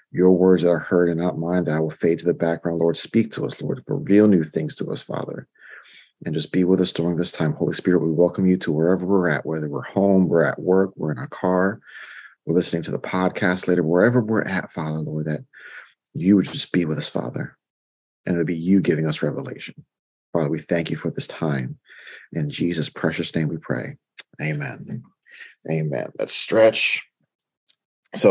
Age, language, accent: 30-49, English, American